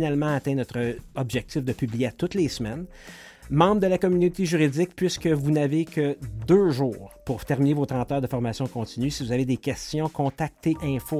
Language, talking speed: French, 195 wpm